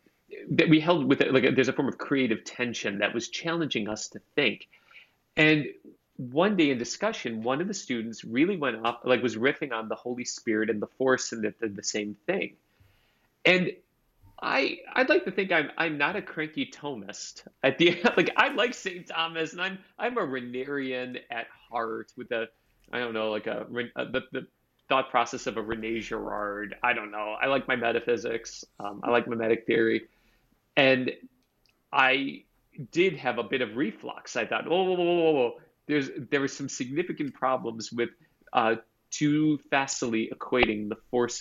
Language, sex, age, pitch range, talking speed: English, male, 30-49, 115-155 Hz, 185 wpm